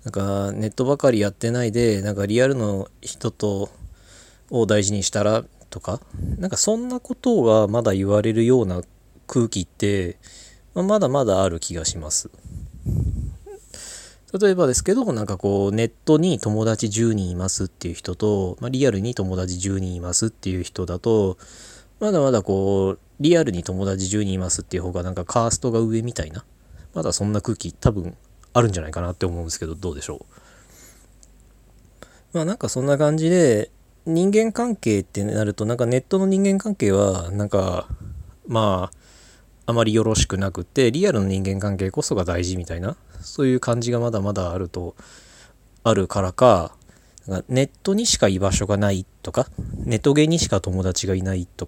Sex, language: male, Japanese